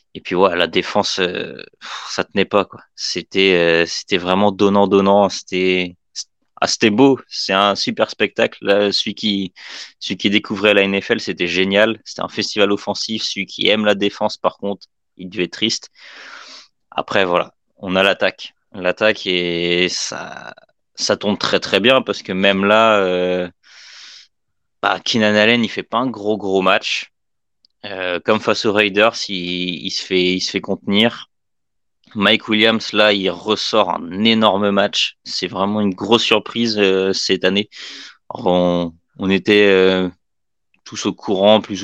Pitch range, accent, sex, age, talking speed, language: 95-105 Hz, French, male, 20-39, 165 wpm, French